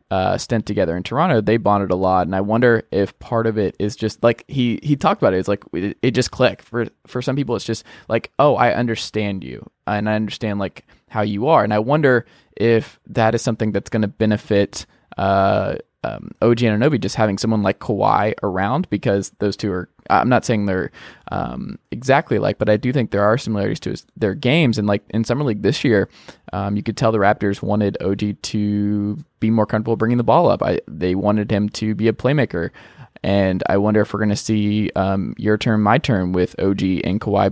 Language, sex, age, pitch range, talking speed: English, male, 20-39, 100-115 Hz, 220 wpm